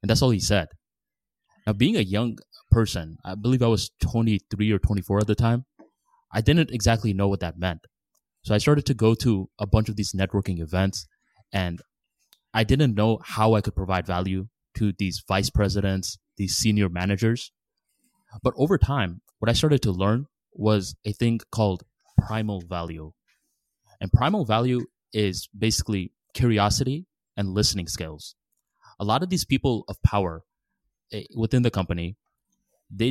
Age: 20-39